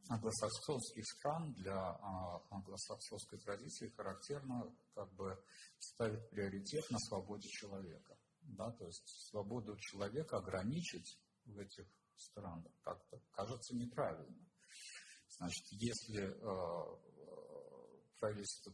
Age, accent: 50-69, native